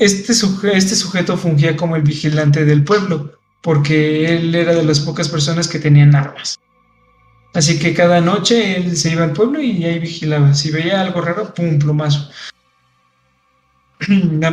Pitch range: 155-195 Hz